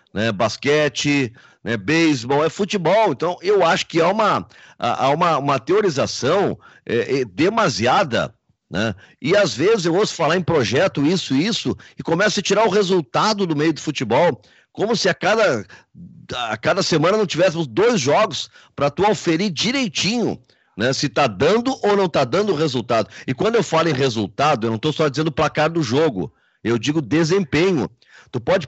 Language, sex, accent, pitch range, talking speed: Portuguese, male, Brazilian, 145-195 Hz, 175 wpm